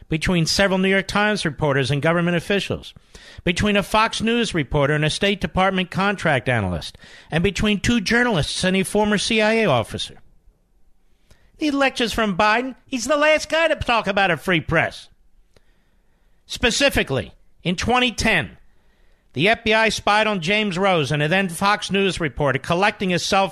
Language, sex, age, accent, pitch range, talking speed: English, male, 50-69, American, 170-220 Hz, 155 wpm